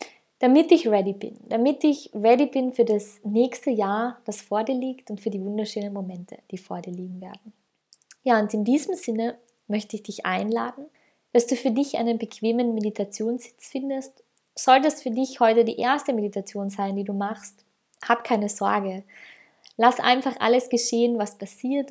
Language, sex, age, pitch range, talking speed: German, female, 20-39, 210-250 Hz, 175 wpm